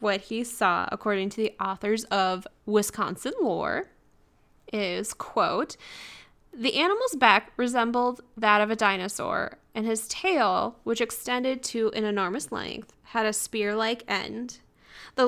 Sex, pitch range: female, 215-275 Hz